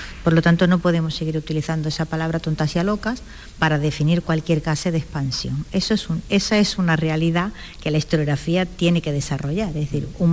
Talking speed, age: 205 wpm, 50-69